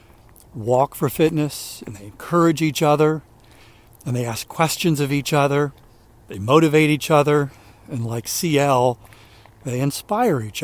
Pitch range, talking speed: 115-145 Hz, 140 wpm